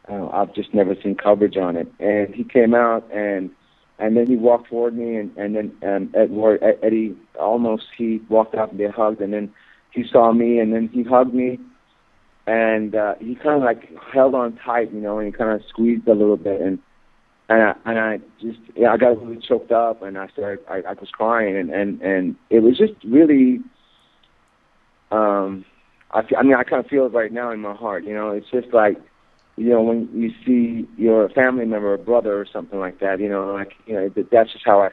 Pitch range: 105-135 Hz